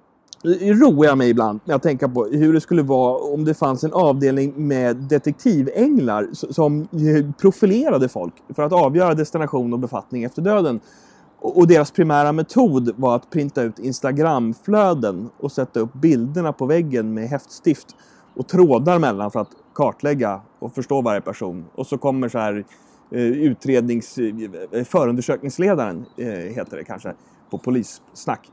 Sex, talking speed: male, 145 wpm